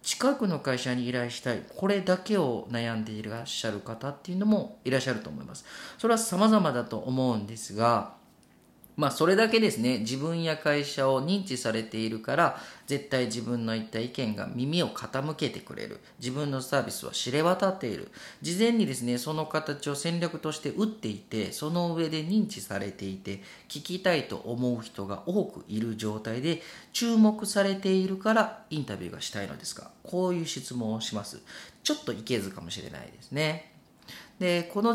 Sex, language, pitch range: male, Japanese, 115-175 Hz